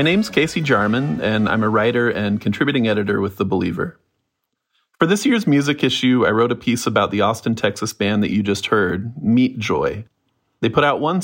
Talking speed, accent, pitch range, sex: 205 wpm, American, 105-125 Hz, male